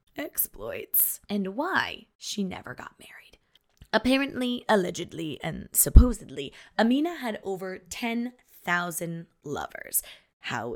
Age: 20-39